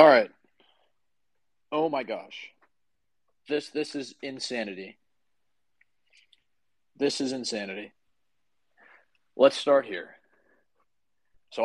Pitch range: 115-135 Hz